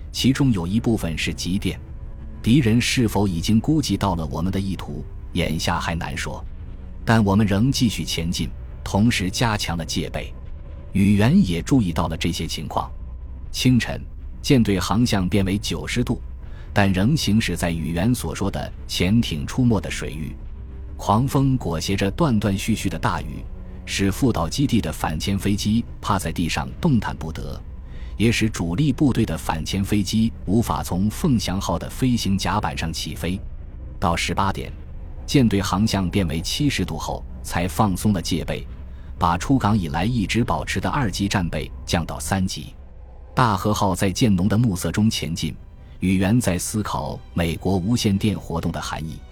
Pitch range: 80-105 Hz